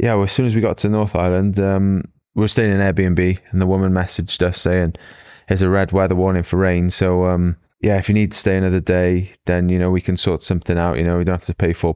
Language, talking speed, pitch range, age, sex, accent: English, 275 wpm, 90-105 Hz, 20-39, male, British